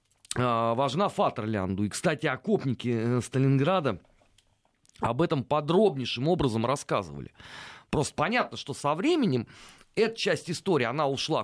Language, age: Russian, 30-49